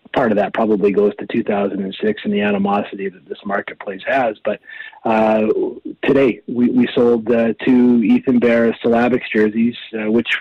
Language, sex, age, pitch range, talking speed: English, male, 30-49, 115-130 Hz, 165 wpm